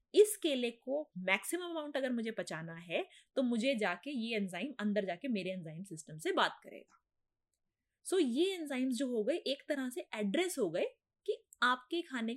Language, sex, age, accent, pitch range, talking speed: Hindi, female, 20-39, native, 200-270 Hz, 185 wpm